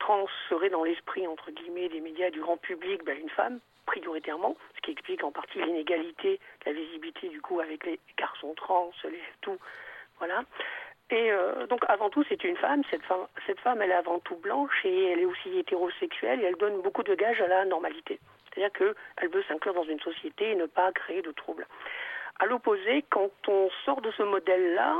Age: 50-69